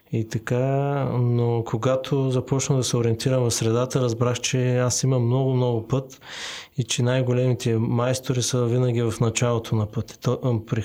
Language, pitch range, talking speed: Bulgarian, 115-130 Hz, 155 wpm